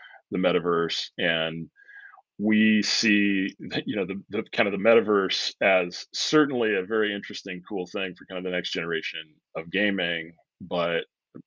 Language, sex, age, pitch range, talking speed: English, male, 30-49, 85-100 Hz, 155 wpm